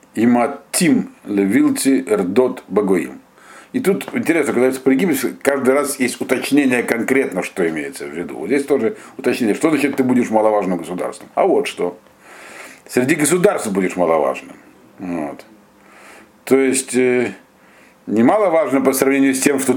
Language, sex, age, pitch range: Russian, male, 50-69, 120-145 Hz